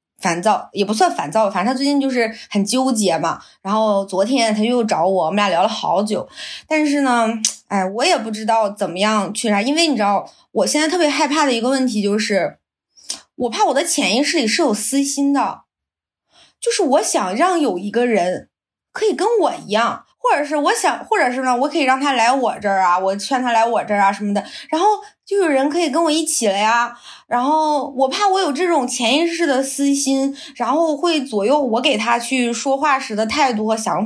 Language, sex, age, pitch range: Chinese, female, 20-39, 215-290 Hz